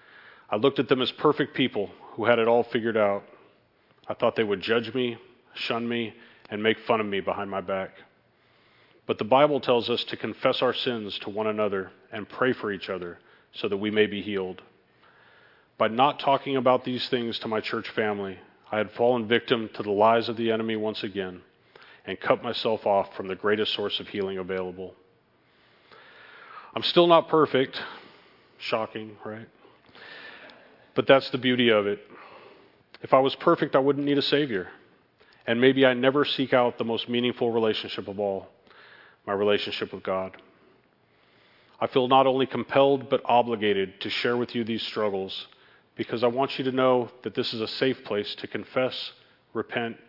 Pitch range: 105-130 Hz